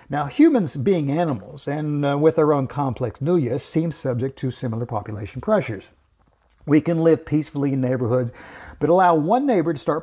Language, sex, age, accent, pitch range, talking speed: English, male, 50-69, American, 125-165 Hz, 175 wpm